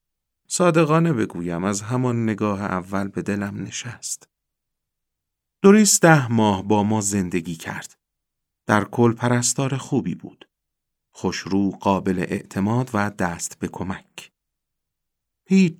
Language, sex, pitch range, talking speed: Persian, male, 95-125 Hz, 115 wpm